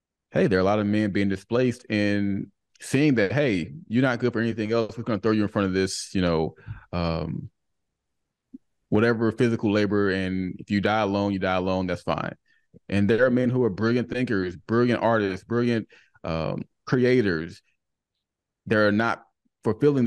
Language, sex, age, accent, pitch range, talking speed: English, male, 30-49, American, 95-115 Hz, 180 wpm